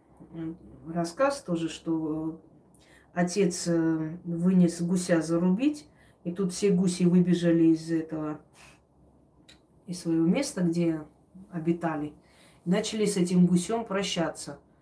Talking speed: 95 wpm